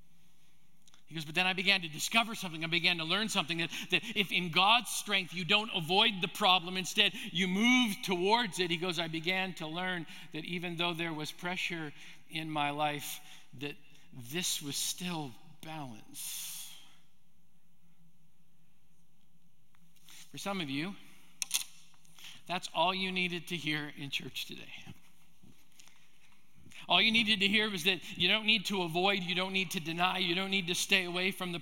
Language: English